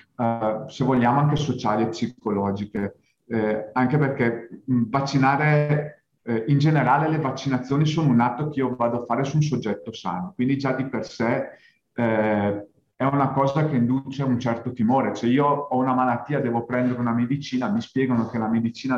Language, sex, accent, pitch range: Italian, male, native, 115-145 Hz